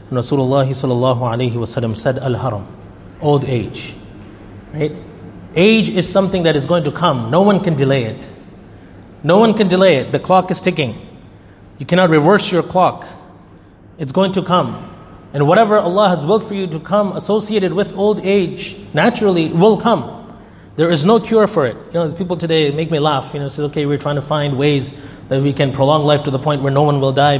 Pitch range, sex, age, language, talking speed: 130-175 Hz, male, 30-49, English, 200 wpm